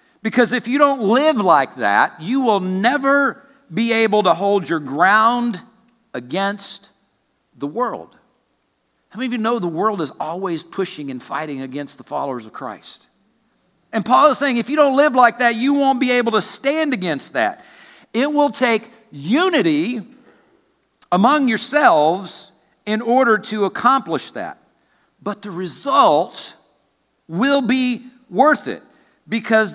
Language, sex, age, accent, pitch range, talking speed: English, male, 50-69, American, 190-270 Hz, 145 wpm